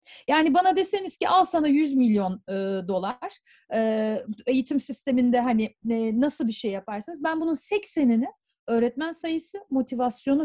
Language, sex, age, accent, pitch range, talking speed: Turkish, female, 40-59, native, 225-325 Hz, 145 wpm